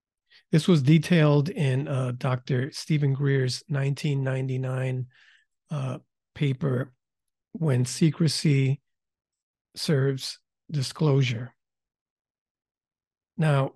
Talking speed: 70 wpm